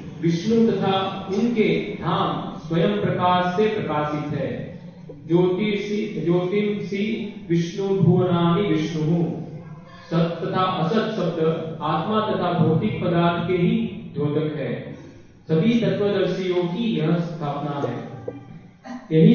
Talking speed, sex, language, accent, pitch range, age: 40 wpm, male, Hindi, native, 160-200 Hz, 40-59